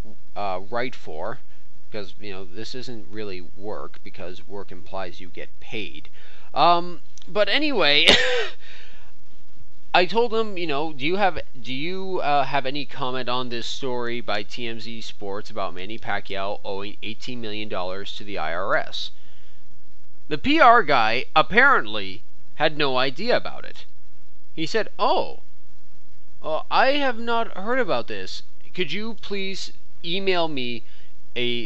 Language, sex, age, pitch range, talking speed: English, male, 30-49, 110-155 Hz, 140 wpm